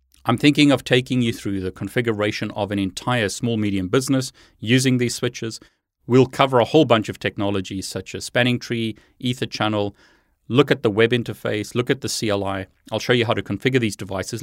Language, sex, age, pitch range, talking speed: English, male, 30-49, 100-130 Hz, 195 wpm